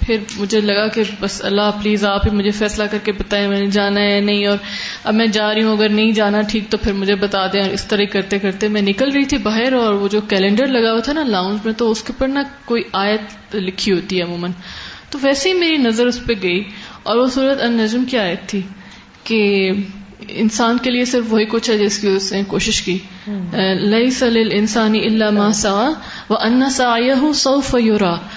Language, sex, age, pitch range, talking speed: Urdu, female, 10-29, 205-275 Hz, 205 wpm